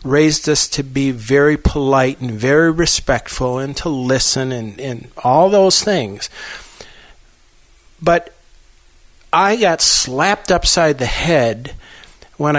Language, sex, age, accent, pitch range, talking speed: English, male, 50-69, American, 130-155 Hz, 120 wpm